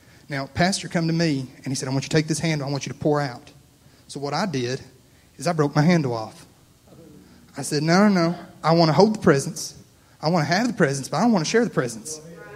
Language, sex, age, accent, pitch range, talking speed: English, male, 30-49, American, 140-175 Hz, 270 wpm